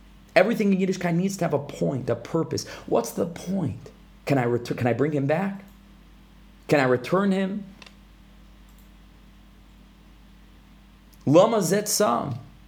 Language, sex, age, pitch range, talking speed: English, male, 30-49, 125-160 Hz, 130 wpm